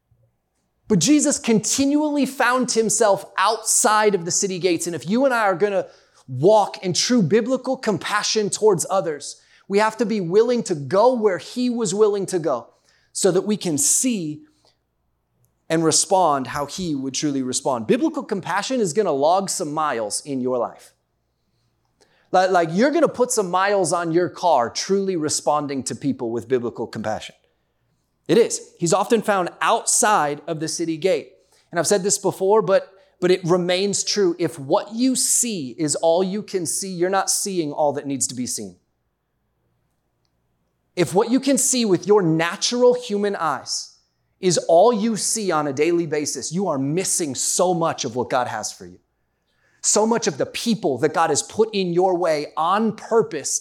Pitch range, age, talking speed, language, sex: 155-220 Hz, 30-49, 180 wpm, English, male